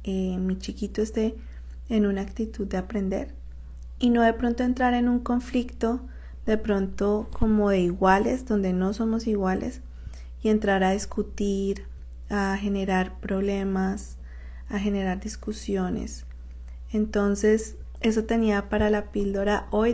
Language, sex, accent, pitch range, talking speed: Spanish, female, Colombian, 195-225 Hz, 130 wpm